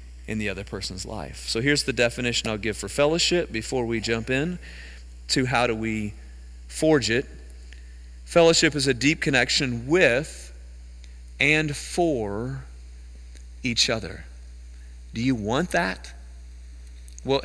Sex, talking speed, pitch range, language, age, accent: male, 130 wpm, 110-165 Hz, English, 40-59, American